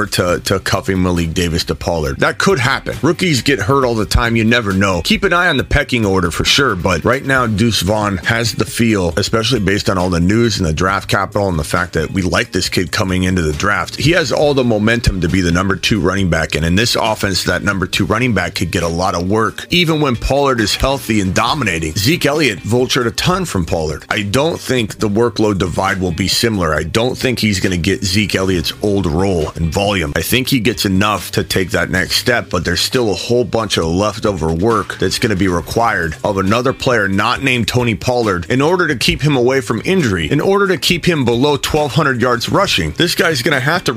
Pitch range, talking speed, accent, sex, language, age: 95-130 Hz, 235 wpm, American, male, English, 30-49